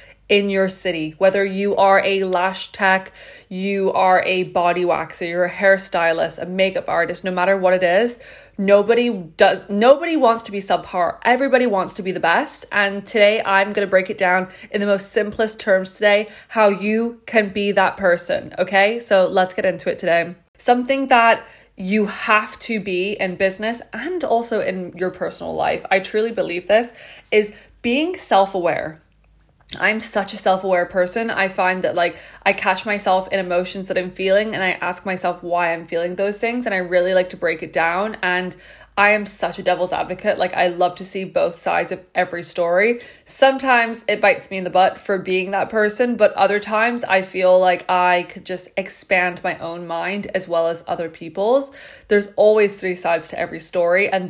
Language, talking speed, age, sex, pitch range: English, 190 wpm, 20-39, female, 180-210 Hz